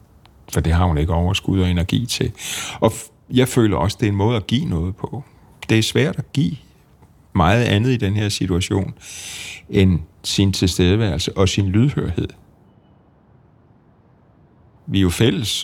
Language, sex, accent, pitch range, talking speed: Danish, male, native, 90-110 Hz, 160 wpm